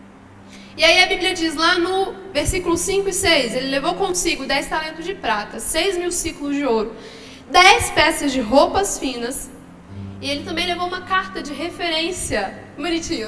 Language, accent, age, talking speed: Gujarati, Brazilian, 10-29, 165 wpm